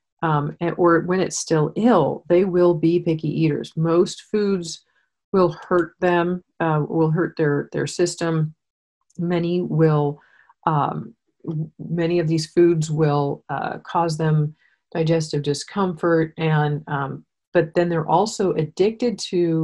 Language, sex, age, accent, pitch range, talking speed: English, female, 40-59, American, 150-175 Hz, 130 wpm